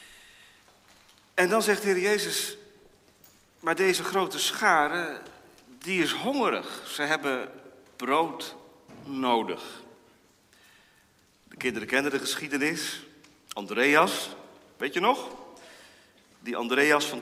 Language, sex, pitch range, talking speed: Dutch, male, 130-210 Hz, 100 wpm